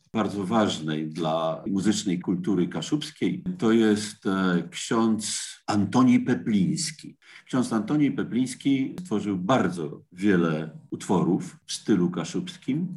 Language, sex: Polish, male